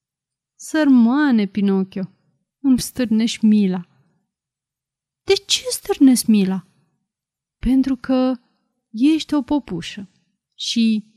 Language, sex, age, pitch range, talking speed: Romanian, female, 30-49, 205-275 Hz, 80 wpm